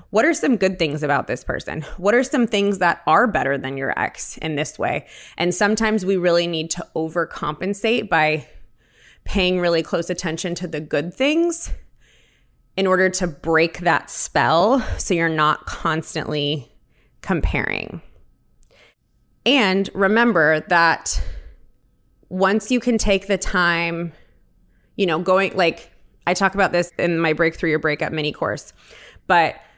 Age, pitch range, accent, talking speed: 20-39, 165-200 Hz, American, 145 wpm